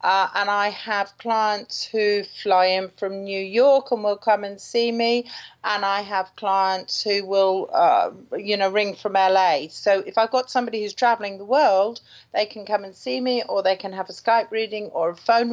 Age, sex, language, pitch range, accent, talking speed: 40-59, female, English, 200-245 Hz, British, 210 wpm